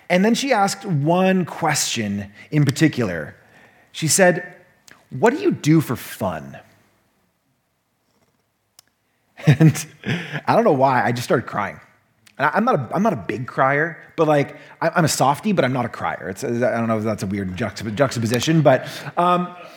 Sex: male